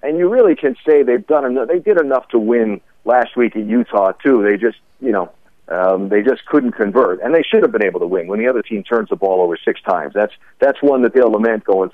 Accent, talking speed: American, 260 wpm